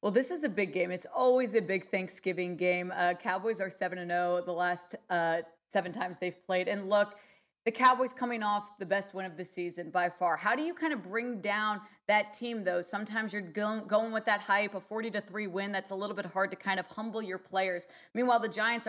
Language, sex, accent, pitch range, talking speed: English, female, American, 185-230 Hz, 230 wpm